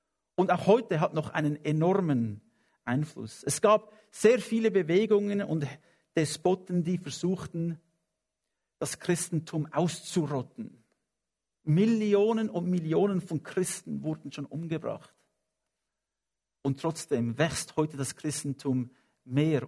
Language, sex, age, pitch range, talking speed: English, male, 50-69, 140-165 Hz, 105 wpm